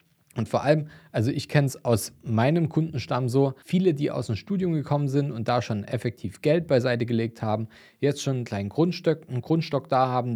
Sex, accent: male, German